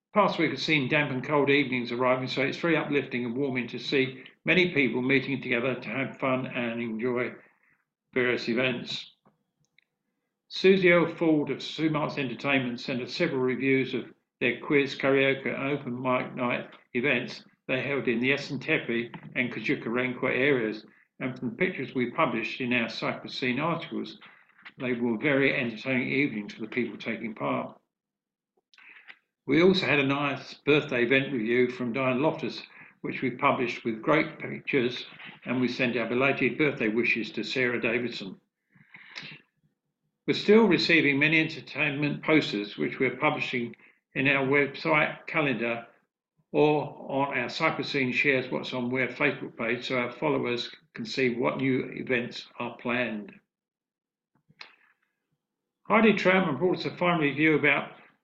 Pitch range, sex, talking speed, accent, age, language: 125-145 Hz, male, 150 wpm, British, 50-69, English